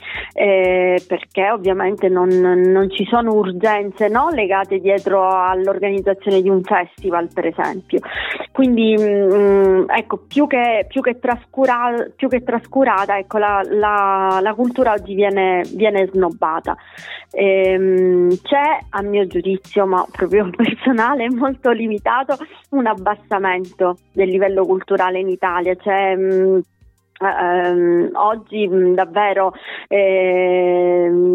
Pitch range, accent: 190-220 Hz, native